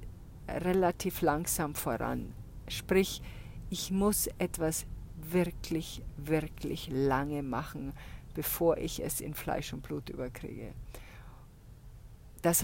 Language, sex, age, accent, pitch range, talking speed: German, female, 50-69, German, 130-180 Hz, 95 wpm